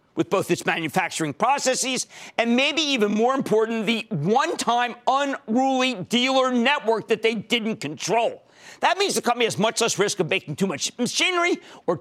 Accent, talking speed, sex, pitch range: American, 165 wpm, male, 185-265 Hz